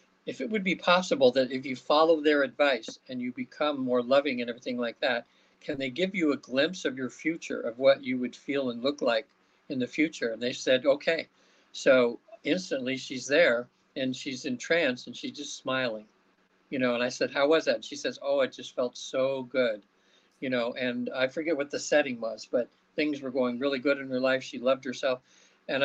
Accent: American